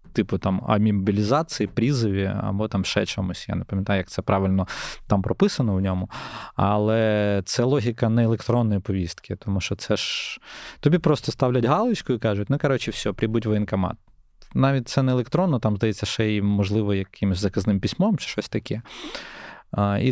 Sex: male